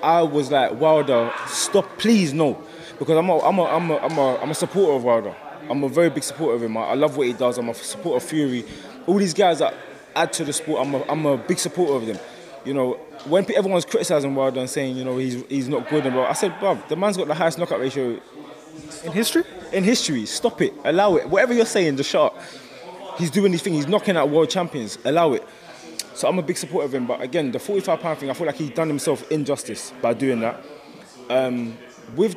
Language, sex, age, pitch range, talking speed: English, male, 20-39, 135-180 Hz, 245 wpm